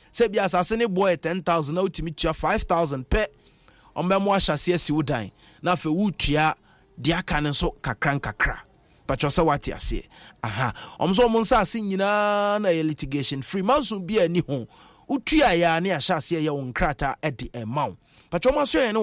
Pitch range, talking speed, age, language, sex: 135-185 Hz, 185 wpm, 30-49, English, male